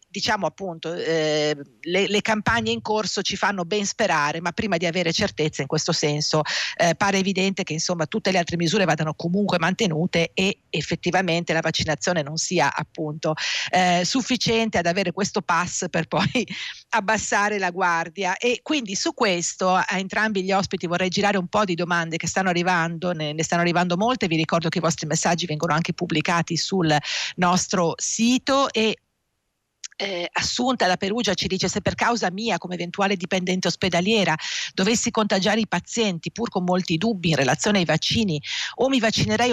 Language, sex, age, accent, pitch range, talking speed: Italian, female, 50-69, native, 170-210 Hz, 170 wpm